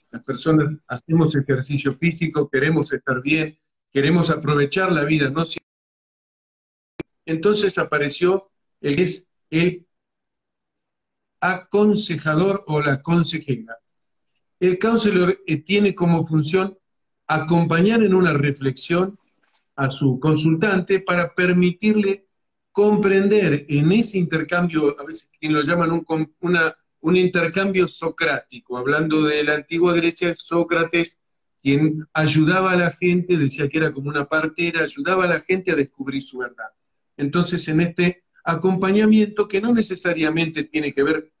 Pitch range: 145-180 Hz